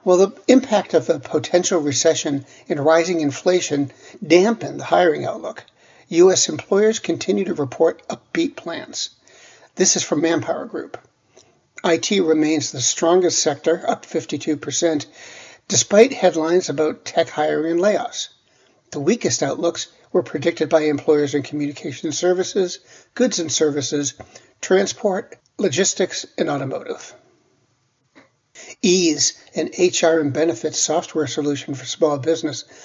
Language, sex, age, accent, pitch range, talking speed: English, male, 60-79, American, 155-185 Hz, 120 wpm